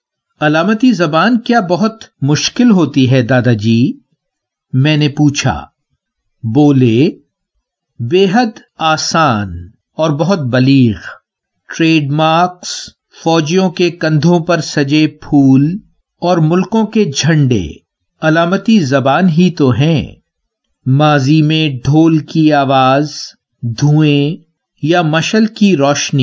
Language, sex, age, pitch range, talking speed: English, male, 50-69, 135-180 Hz, 95 wpm